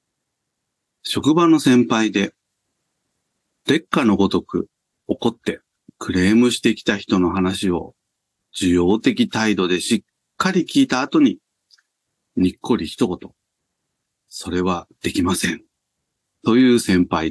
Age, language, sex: 40-59, Japanese, male